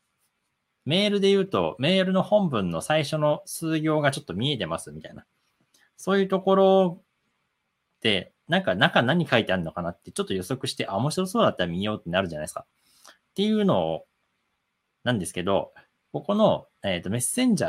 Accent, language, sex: native, Japanese, male